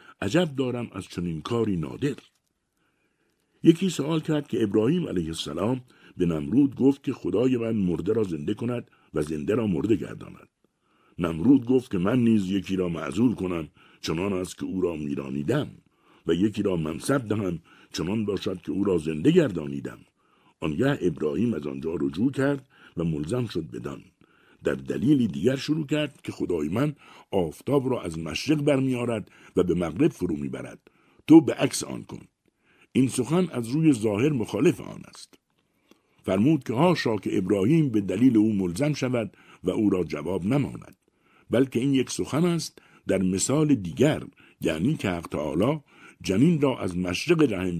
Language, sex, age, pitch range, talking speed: Persian, male, 60-79, 95-145 Hz, 160 wpm